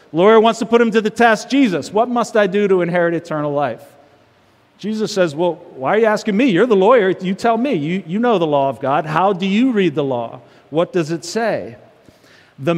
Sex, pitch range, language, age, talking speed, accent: male, 170-225 Hz, English, 40-59, 230 wpm, American